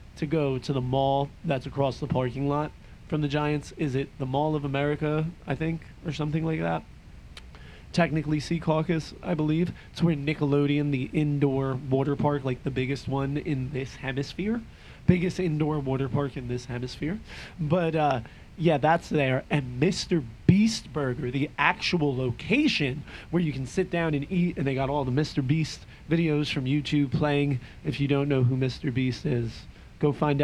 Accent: American